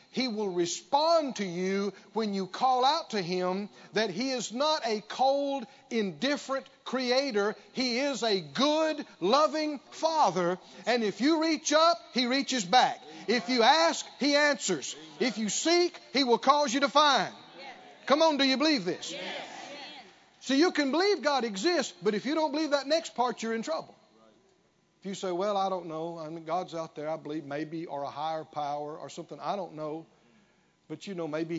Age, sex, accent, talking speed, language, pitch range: 50-69, male, American, 185 wpm, English, 160-265 Hz